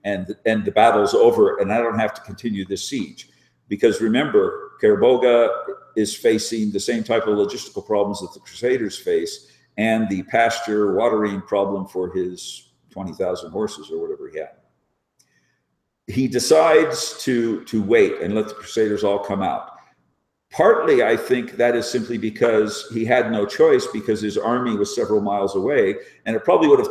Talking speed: 170 wpm